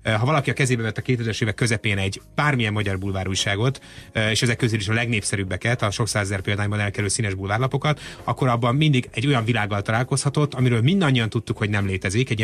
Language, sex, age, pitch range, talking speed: Hungarian, male, 30-49, 105-125 Hz, 200 wpm